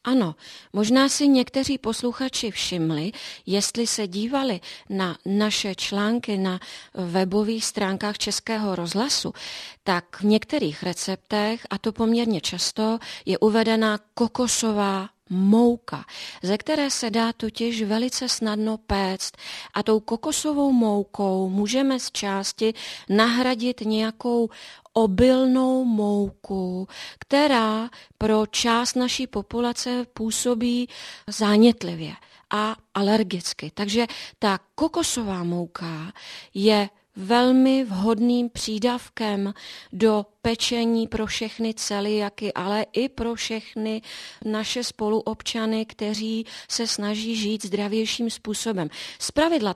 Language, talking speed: Czech, 100 wpm